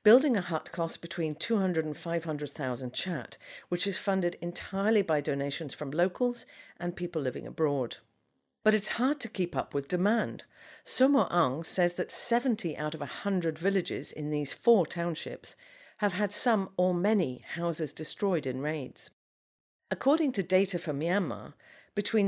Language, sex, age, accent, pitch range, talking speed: English, female, 50-69, British, 155-220 Hz, 155 wpm